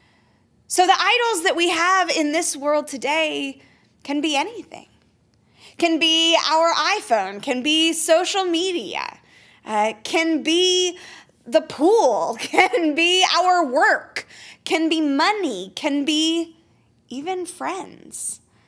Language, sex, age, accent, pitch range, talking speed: English, female, 20-39, American, 245-330 Hz, 120 wpm